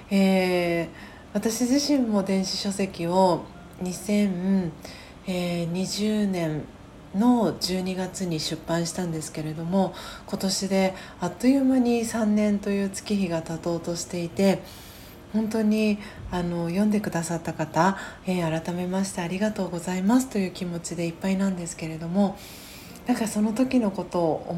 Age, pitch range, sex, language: 40-59, 170-205 Hz, female, Japanese